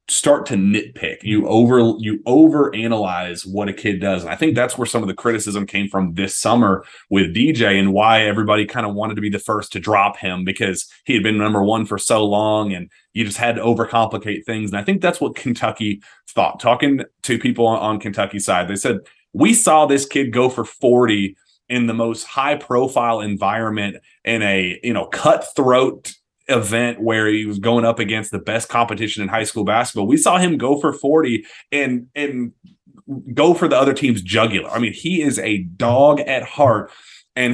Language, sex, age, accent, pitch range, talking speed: English, male, 30-49, American, 105-130 Hz, 200 wpm